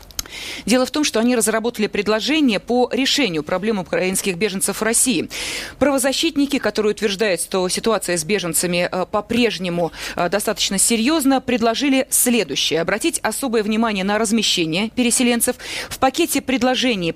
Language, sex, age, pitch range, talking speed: Russian, female, 30-49, 200-255 Hz, 120 wpm